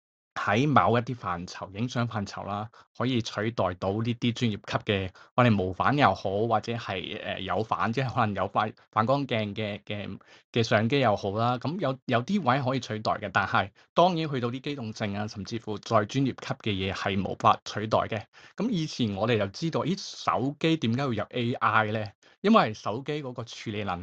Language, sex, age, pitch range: Chinese, male, 20-39, 105-135 Hz